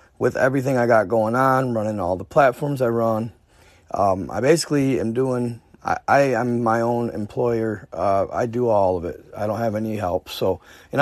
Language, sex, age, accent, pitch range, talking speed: English, male, 30-49, American, 85-135 Hz, 190 wpm